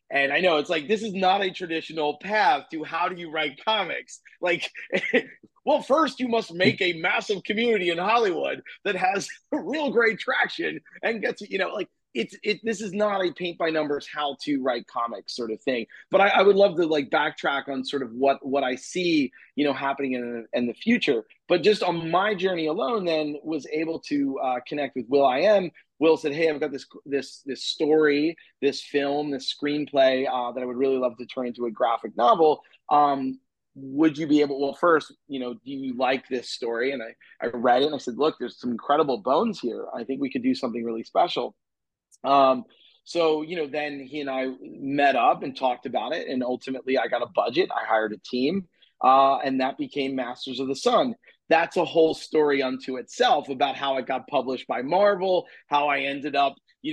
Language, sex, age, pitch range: English, male, 30-49, 135-180 Hz